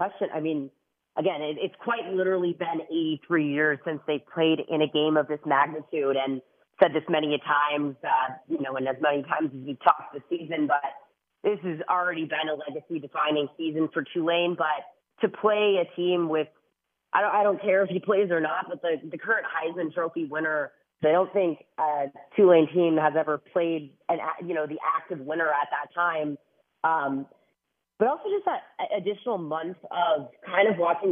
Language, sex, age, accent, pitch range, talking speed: English, female, 30-49, American, 150-180 Hz, 190 wpm